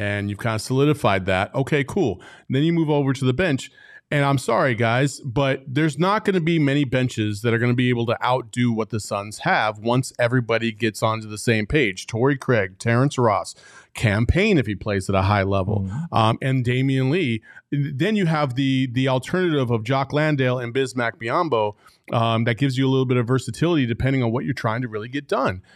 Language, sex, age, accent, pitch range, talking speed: English, male, 30-49, American, 120-165 Hz, 215 wpm